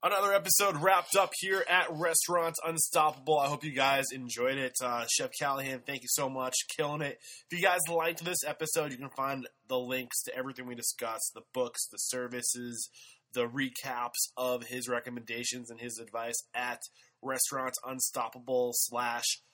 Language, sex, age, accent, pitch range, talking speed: English, male, 20-39, American, 120-150 Hz, 165 wpm